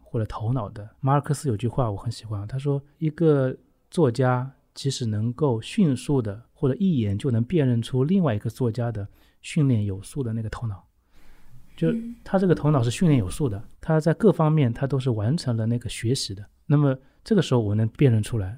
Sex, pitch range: male, 115-155 Hz